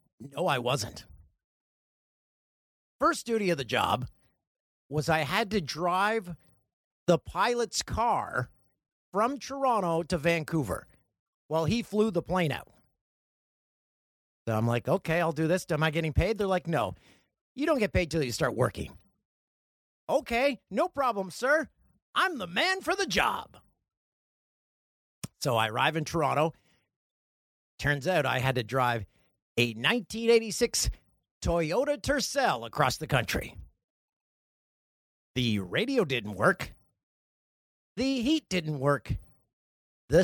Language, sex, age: English, male, 50-69